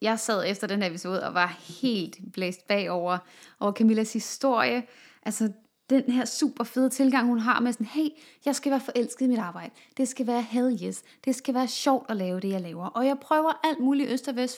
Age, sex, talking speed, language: 20-39, female, 225 wpm, English